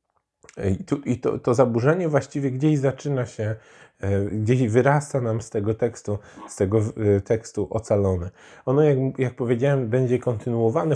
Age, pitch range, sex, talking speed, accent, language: 20-39, 105-120 Hz, male, 140 wpm, native, Polish